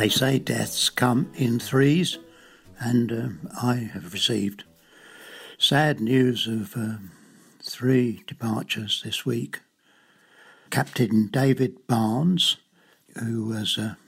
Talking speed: 100 wpm